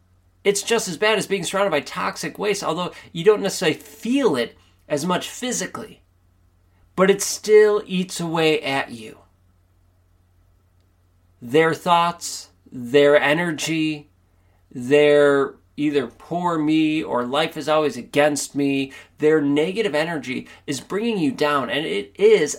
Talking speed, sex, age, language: 135 wpm, male, 30-49, English